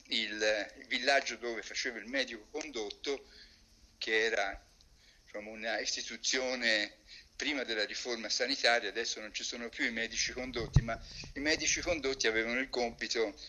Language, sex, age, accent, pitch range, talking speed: Italian, male, 50-69, native, 120-175 Hz, 130 wpm